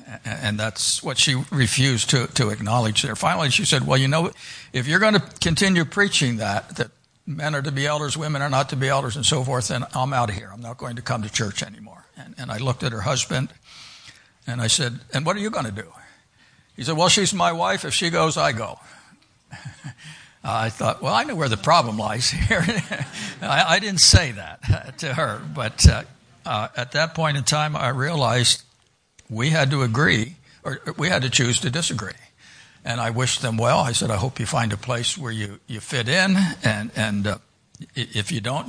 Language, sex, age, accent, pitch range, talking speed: English, male, 60-79, American, 115-145 Hz, 215 wpm